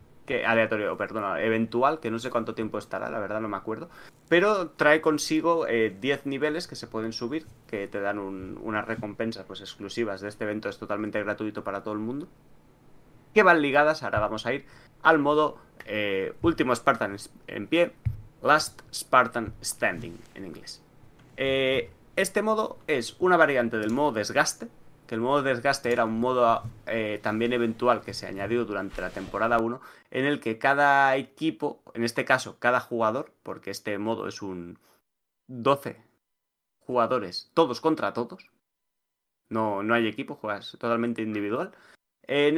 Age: 30-49